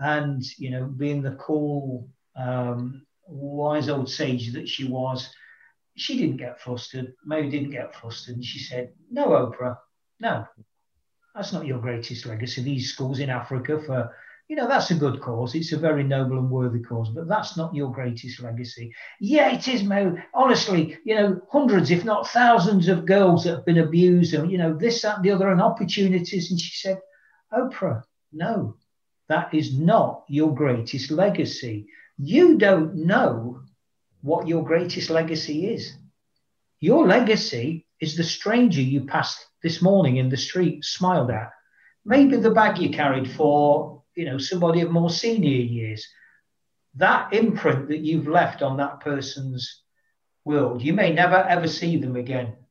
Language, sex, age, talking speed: English, male, 50-69, 165 wpm